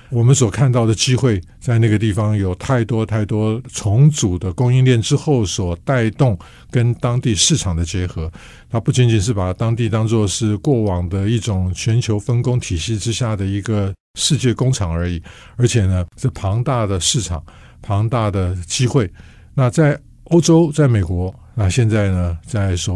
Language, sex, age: Chinese, male, 50-69